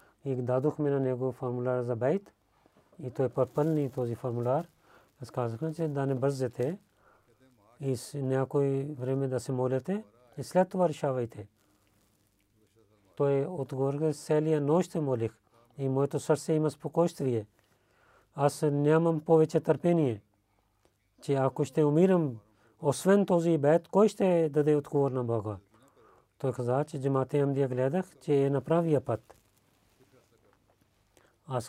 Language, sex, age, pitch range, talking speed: Bulgarian, male, 40-59, 125-150 Hz, 130 wpm